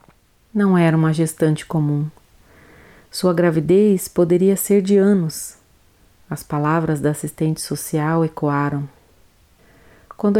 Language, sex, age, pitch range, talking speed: Portuguese, female, 40-59, 155-210 Hz, 105 wpm